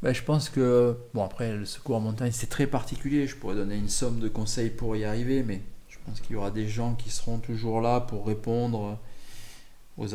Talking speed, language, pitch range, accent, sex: 225 wpm, French, 105-125 Hz, French, male